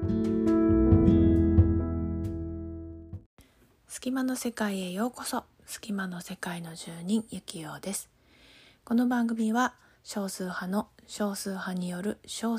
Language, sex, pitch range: Japanese, female, 175-230 Hz